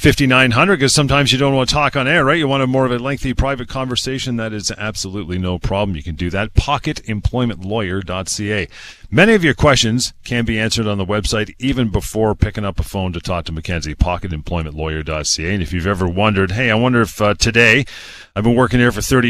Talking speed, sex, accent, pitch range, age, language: 210 wpm, male, American, 95-120 Hz, 40-59, English